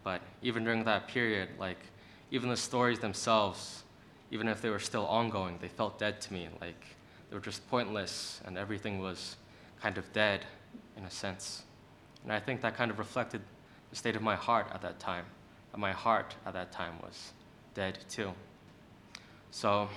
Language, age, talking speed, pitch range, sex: English, 20-39, 180 wpm, 95-110 Hz, male